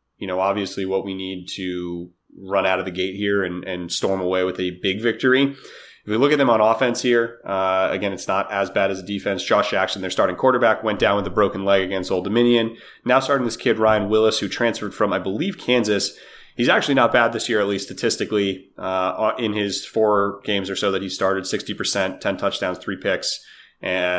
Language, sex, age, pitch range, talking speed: English, male, 30-49, 95-110 Hz, 225 wpm